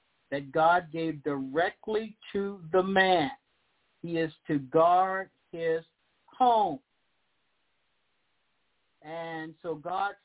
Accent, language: American, English